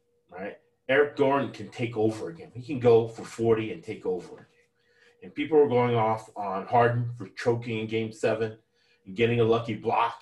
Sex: male